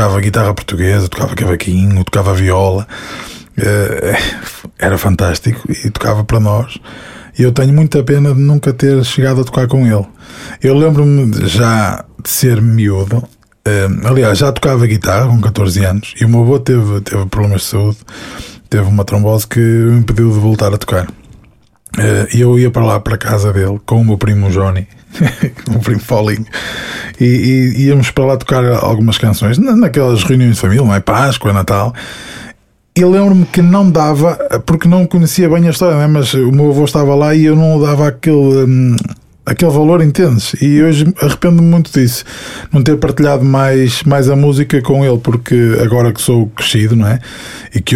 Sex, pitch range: male, 105-140 Hz